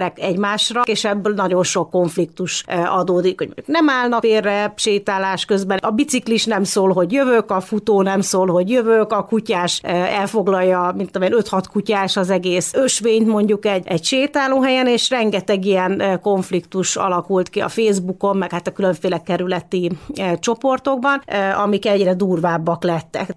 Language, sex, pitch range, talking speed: Hungarian, female, 180-215 Hz, 145 wpm